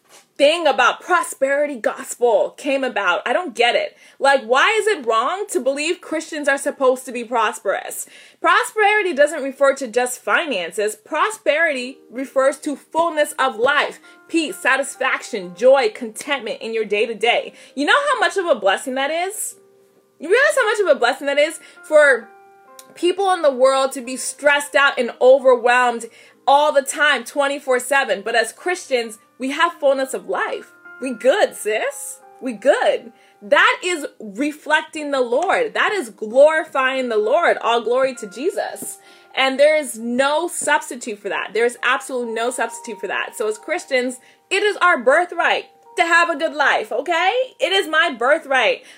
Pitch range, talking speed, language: 255-340 Hz, 165 wpm, English